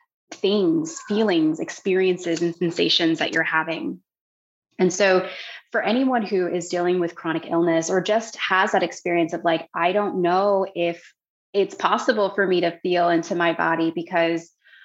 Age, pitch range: 20-39, 170-205 Hz